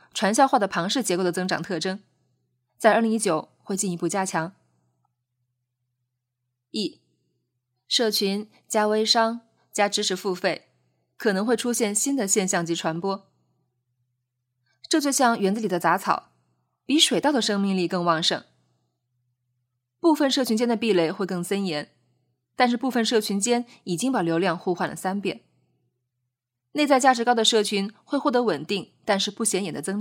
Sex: female